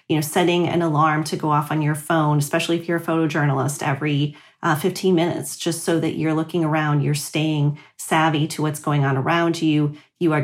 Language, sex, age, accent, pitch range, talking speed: English, female, 40-59, American, 145-175 Hz, 215 wpm